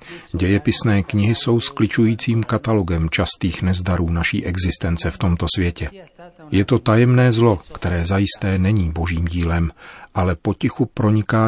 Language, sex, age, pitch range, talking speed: Czech, male, 40-59, 85-105 Hz, 125 wpm